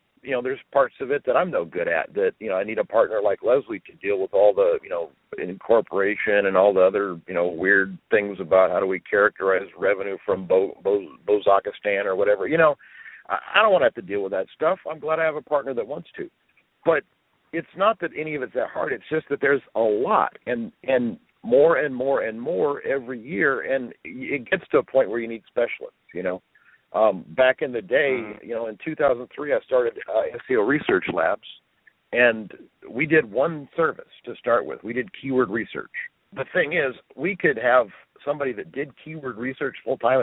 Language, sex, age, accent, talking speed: English, male, 50-69, American, 215 wpm